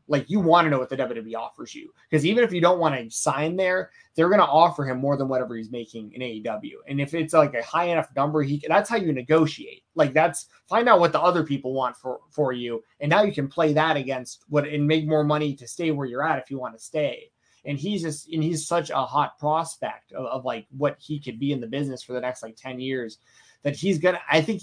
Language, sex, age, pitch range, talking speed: English, male, 20-39, 125-160 Hz, 265 wpm